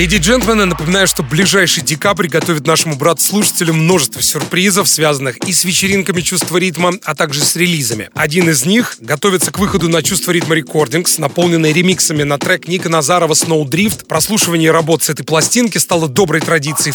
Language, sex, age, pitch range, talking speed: Russian, male, 30-49, 155-190 Hz, 165 wpm